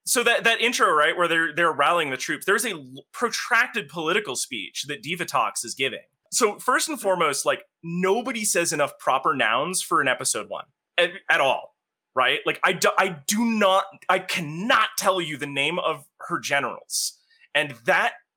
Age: 30-49